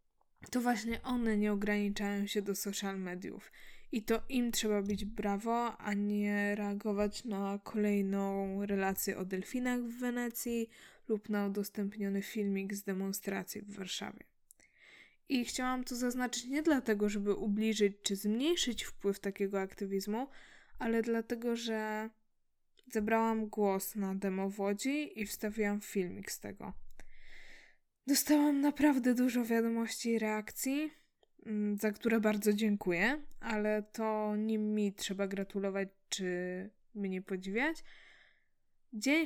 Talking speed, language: 125 wpm, Polish